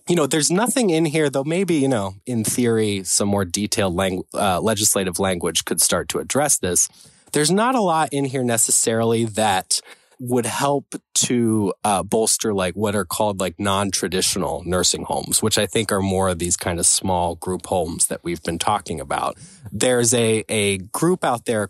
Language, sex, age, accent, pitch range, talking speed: English, male, 20-39, American, 95-130 Hz, 185 wpm